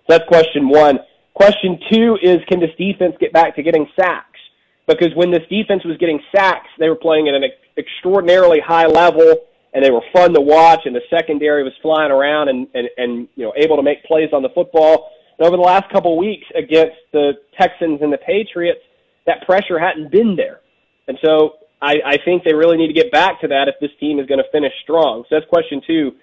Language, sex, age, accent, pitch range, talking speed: English, male, 30-49, American, 140-180 Hz, 220 wpm